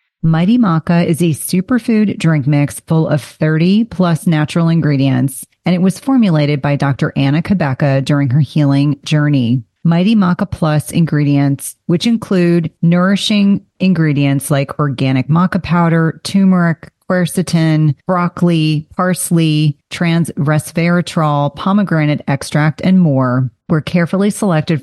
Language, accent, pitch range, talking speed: English, American, 145-180 Hz, 120 wpm